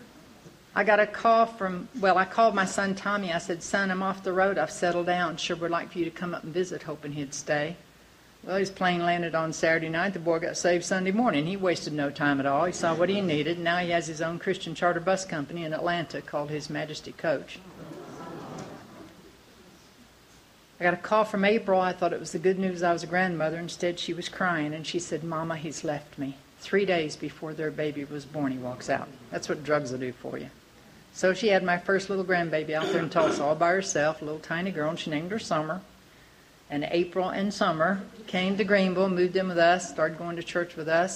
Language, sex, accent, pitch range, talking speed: English, female, American, 155-185 Hz, 230 wpm